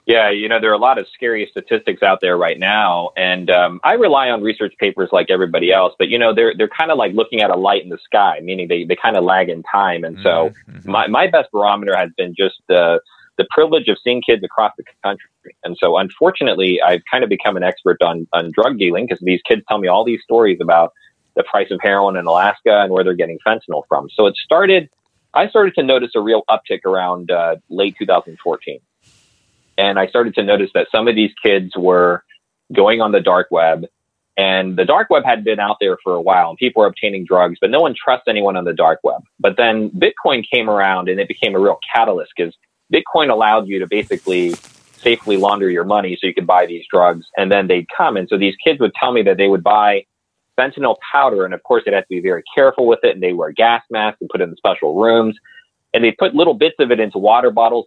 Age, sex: 30-49, male